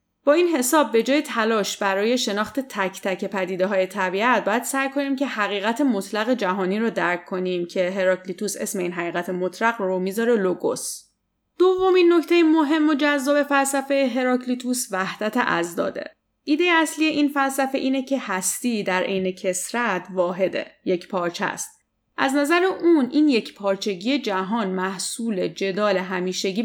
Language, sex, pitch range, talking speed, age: Persian, female, 185-265 Hz, 150 wpm, 30-49